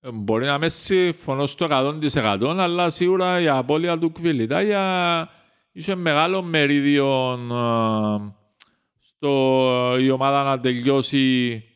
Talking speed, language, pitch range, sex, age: 100 wpm, Greek, 130-175 Hz, male, 50-69